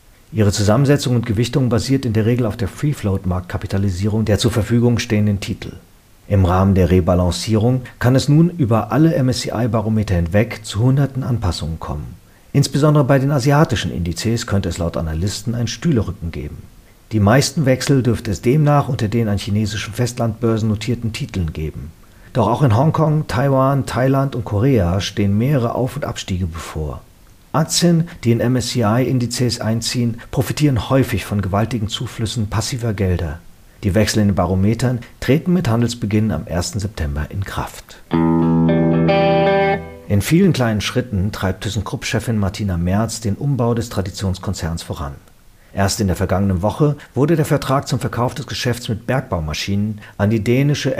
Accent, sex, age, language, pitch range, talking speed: German, male, 40-59, German, 100-125 Hz, 150 wpm